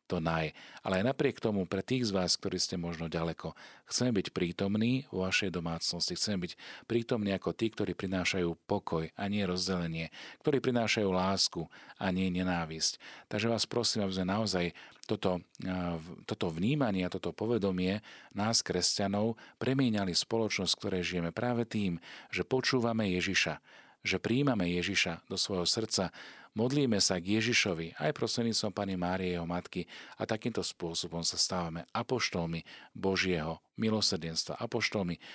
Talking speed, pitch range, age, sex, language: 145 wpm, 85-110 Hz, 40-59, male, Slovak